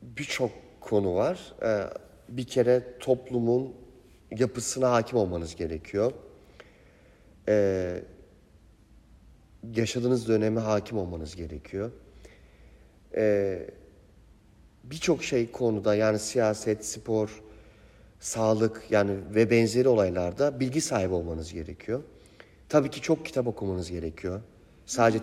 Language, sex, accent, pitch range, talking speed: Turkish, male, native, 100-130 Hz, 95 wpm